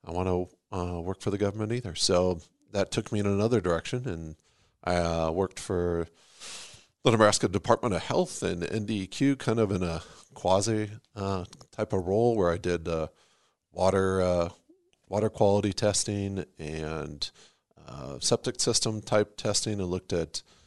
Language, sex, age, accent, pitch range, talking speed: English, male, 40-59, American, 90-110 Hz, 160 wpm